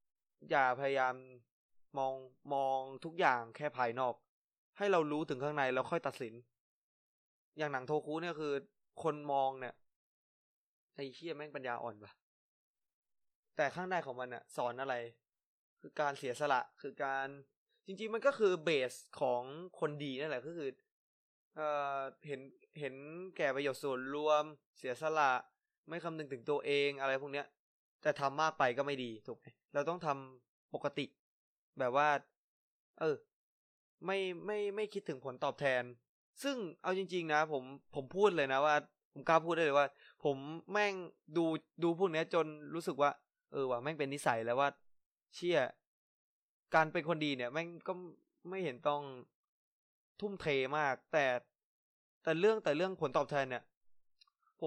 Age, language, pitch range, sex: 20-39, Thai, 135-165 Hz, male